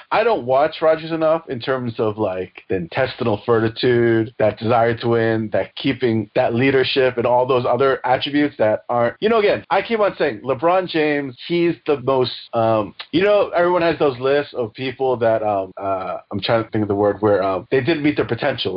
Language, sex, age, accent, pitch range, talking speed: English, male, 30-49, American, 115-165 Hz, 210 wpm